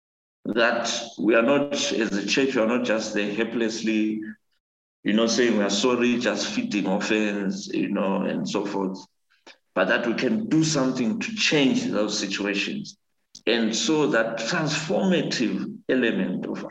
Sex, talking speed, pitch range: male, 155 wpm, 105-155 Hz